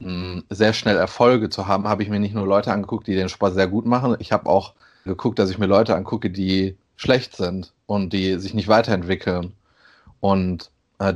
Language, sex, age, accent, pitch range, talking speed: German, male, 30-49, German, 95-110 Hz, 200 wpm